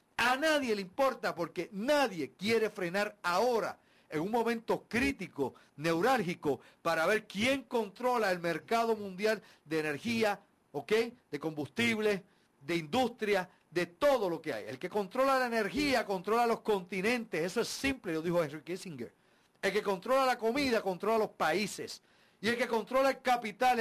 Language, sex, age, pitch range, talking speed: Spanish, male, 50-69, 150-220 Hz, 155 wpm